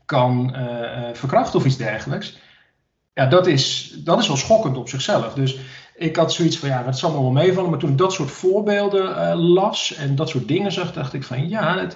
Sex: male